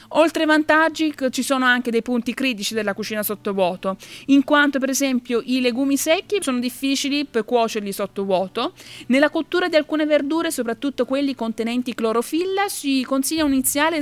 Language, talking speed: Italian, 160 wpm